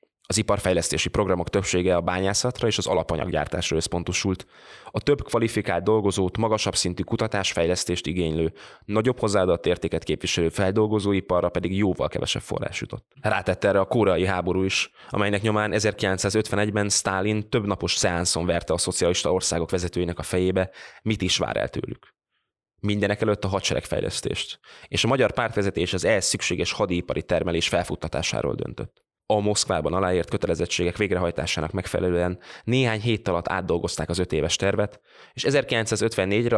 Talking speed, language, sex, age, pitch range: 140 wpm, Hungarian, male, 20-39, 90-105 Hz